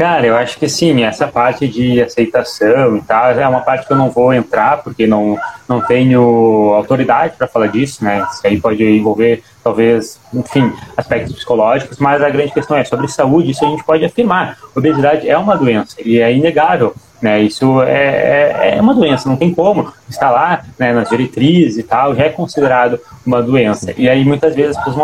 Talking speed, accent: 200 wpm, Brazilian